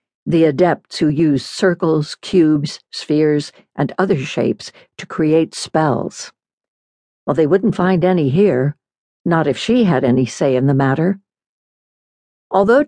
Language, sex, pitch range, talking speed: English, female, 150-195 Hz, 135 wpm